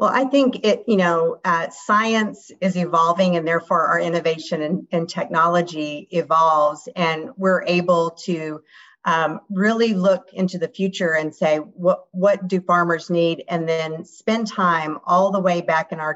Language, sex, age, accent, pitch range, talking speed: English, female, 50-69, American, 160-190 Hz, 165 wpm